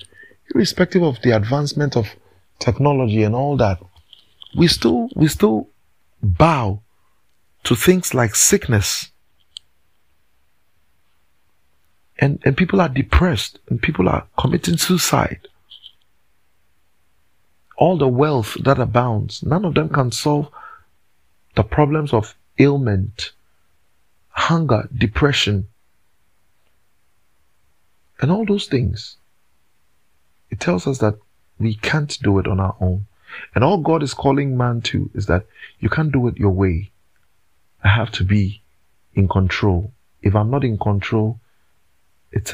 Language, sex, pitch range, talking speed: English, male, 90-125 Hz, 120 wpm